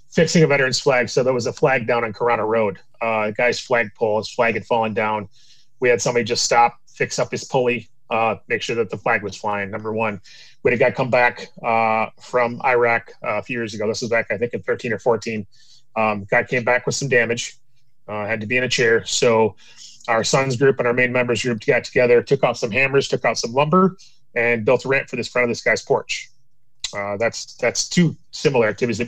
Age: 30-49